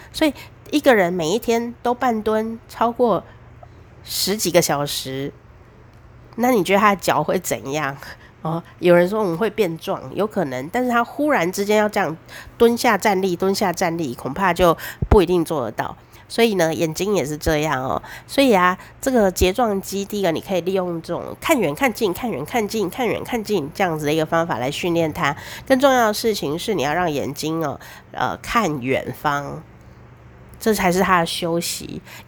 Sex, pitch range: female, 150-210 Hz